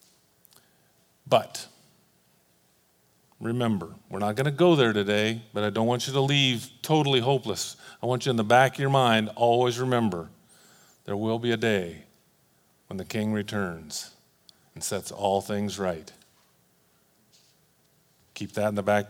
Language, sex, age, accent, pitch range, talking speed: English, male, 40-59, American, 115-155 Hz, 150 wpm